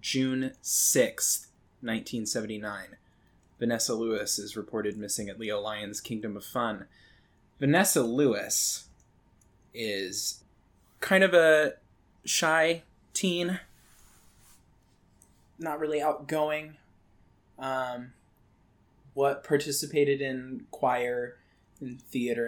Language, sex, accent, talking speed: English, male, American, 85 wpm